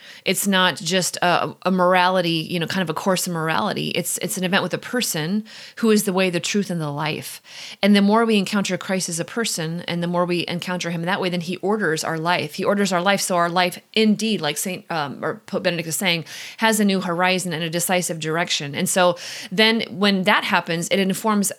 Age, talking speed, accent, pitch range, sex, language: 30-49, 235 wpm, American, 170-205 Hz, female, English